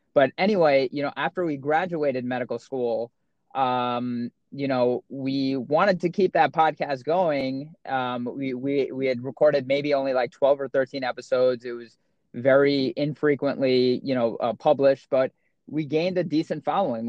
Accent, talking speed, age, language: American, 160 wpm, 20-39, English